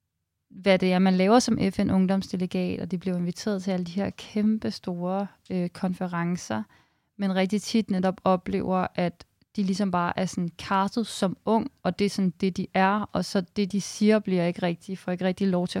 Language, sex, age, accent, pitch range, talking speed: Danish, female, 30-49, native, 180-205 Hz, 200 wpm